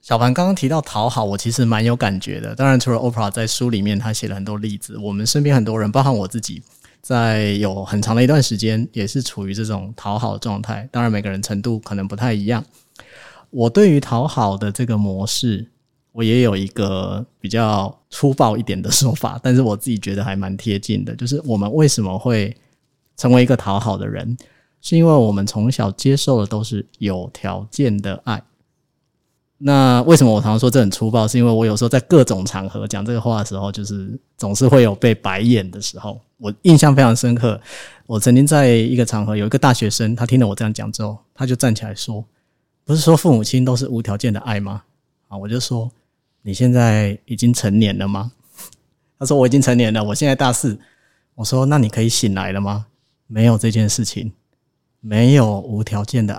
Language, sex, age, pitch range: Chinese, male, 20-39, 105-125 Hz